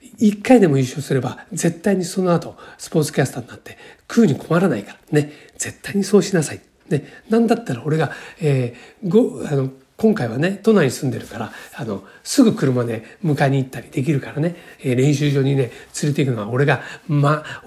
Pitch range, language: 135-210 Hz, Japanese